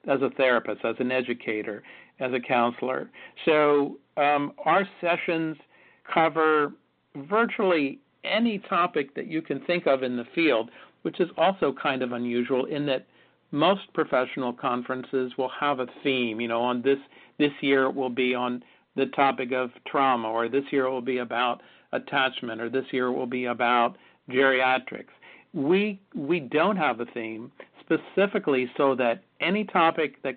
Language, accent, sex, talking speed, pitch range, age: English, American, male, 160 wpm, 125-145 Hz, 60-79